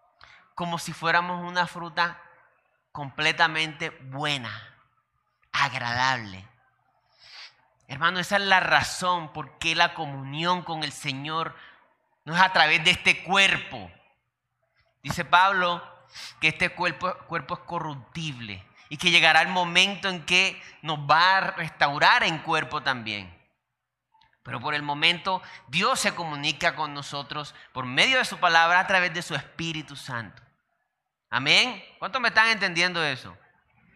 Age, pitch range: 30-49, 140-180 Hz